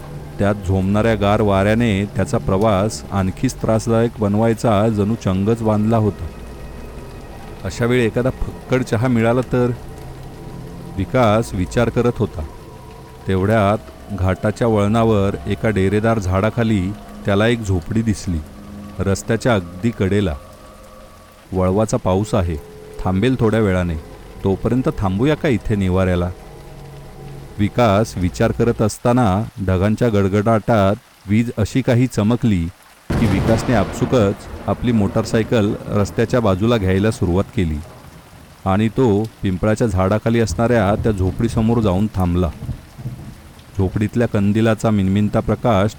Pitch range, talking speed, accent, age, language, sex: 95-115 Hz, 105 wpm, native, 40-59, Marathi, male